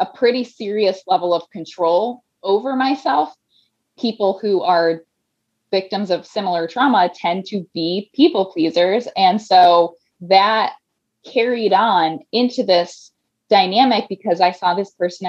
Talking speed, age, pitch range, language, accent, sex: 130 wpm, 20-39, 175-240 Hz, English, American, female